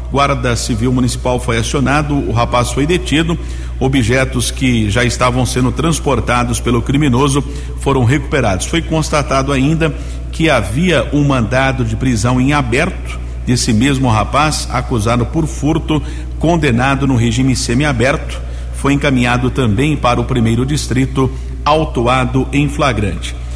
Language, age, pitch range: Portuguese, 50-69, 115-140 Hz